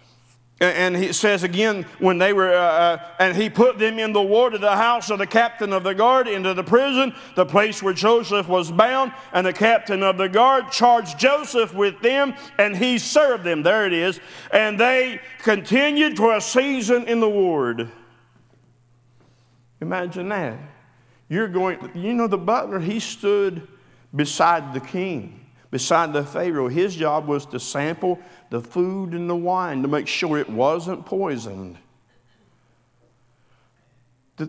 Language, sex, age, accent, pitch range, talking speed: English, male, 50-69, American, 130-205 Hz, 160 wpm